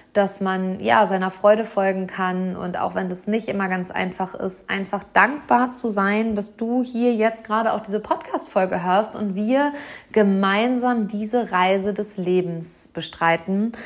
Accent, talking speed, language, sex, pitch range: German, 160 wpm, German, female, 185-230 Hz